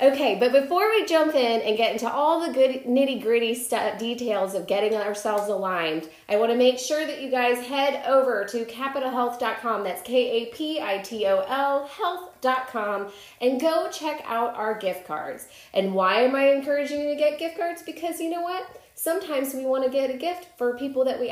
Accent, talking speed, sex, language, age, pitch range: American, 180 wpm, female, English, 30-49, 215-290 Hz